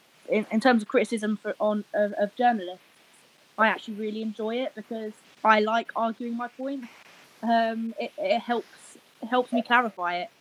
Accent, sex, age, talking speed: British, female, 20-39, 165 wpm